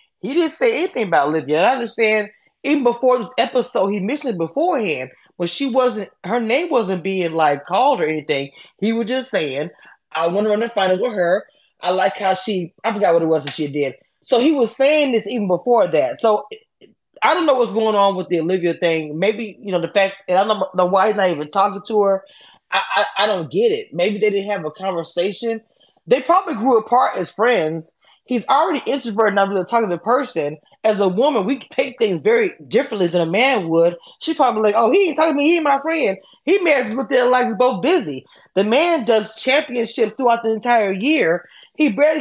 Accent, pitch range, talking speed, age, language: American, 190-260 Hz, 225 wpm, 20-39, English